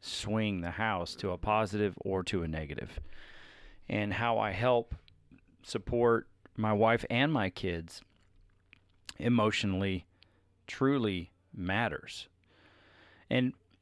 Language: English